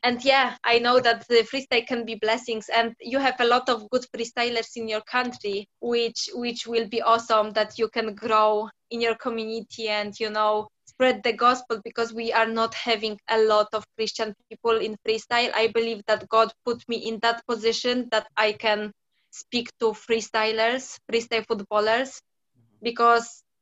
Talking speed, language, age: 175 wpm, English, 20-39